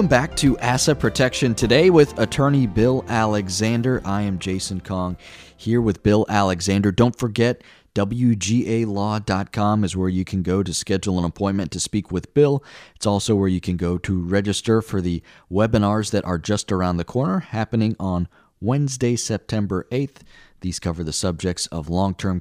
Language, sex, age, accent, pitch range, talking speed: English, male, 30-49, American, 90-115 Hz, 165 wpm